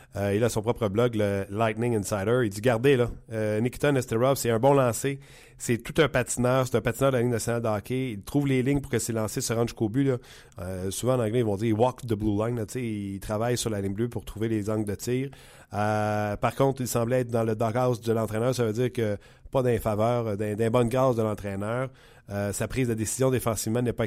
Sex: male